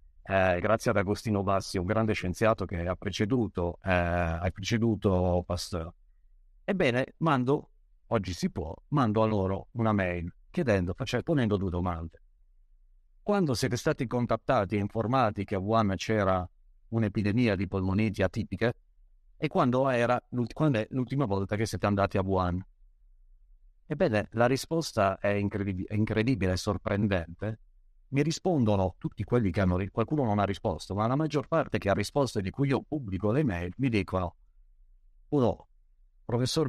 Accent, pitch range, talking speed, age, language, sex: native, 95-130 Hz, 150 wpm, 50-69, Italian, male